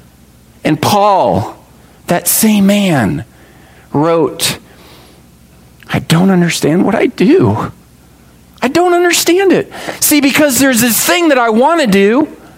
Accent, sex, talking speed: American, male, 125 wpm